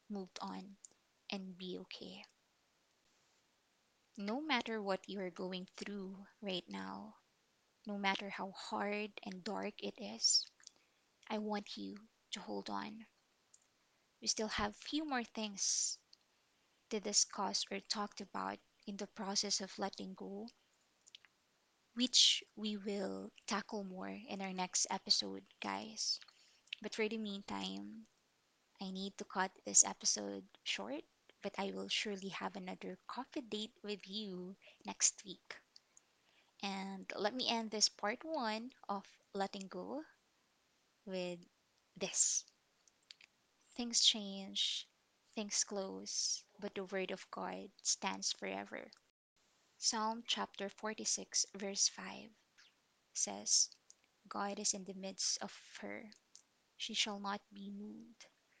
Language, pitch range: English, 185-215 Hz